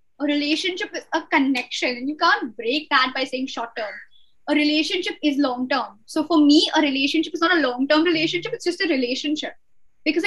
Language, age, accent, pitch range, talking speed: English, 20-39, Indian, 275-335 Hz, 205 wpm